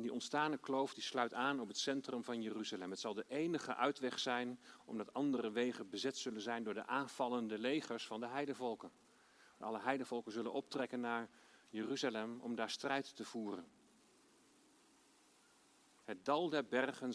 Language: Dutch